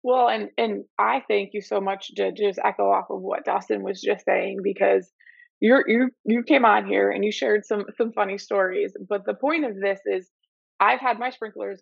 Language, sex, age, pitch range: English, female, 20-39, 200-250 Hz